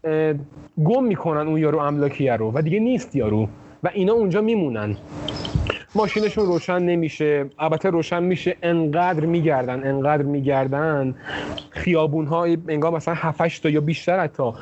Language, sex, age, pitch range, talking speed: Persian, male, 30-49, 145-180 Hz, 125 wpm